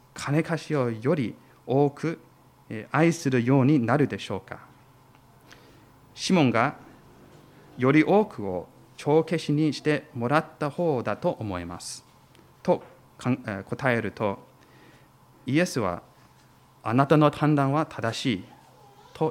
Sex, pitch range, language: male, 115-150 Hz, Japanese